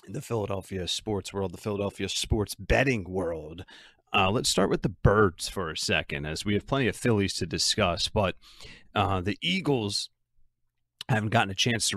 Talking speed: 180 wpm